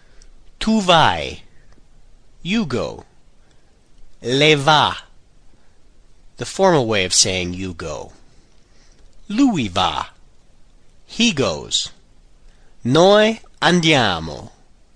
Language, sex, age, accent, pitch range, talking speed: Italian, male, 40-59, American, 130-190 Hz, 75 wpm